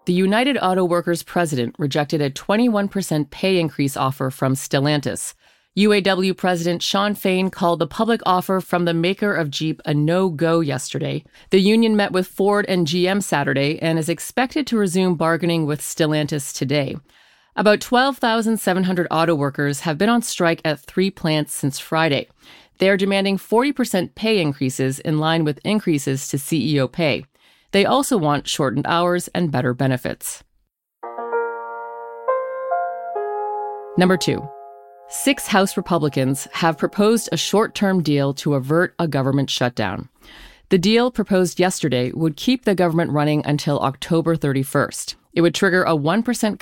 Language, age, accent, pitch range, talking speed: English, 40-59, American, 145-190 Hz, 145 wpm